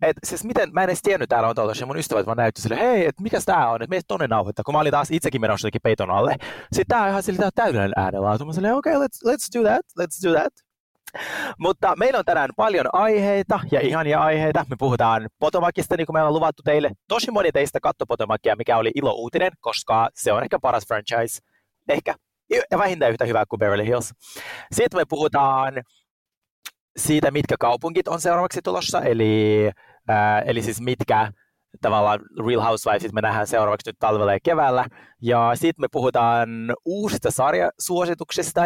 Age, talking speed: 30-49, 190 wpm